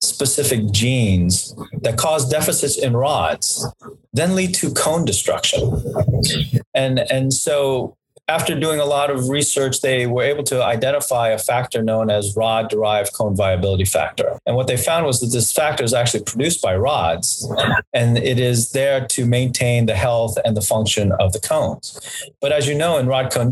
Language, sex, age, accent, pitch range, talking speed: English, male, 40-59, American, 110-135 Hz, 175 wpm